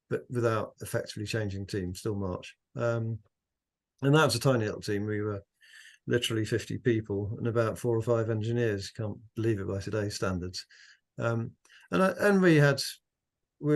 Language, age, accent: English, 50-69, British